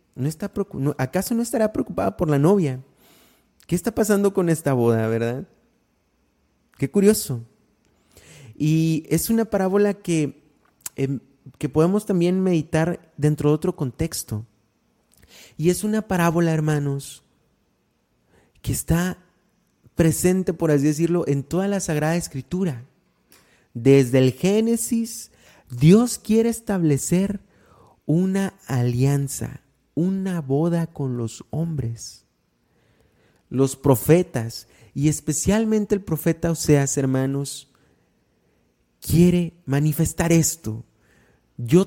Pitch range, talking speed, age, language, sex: 125-180 Hz, 100 wpm, 30-49, Spanish, male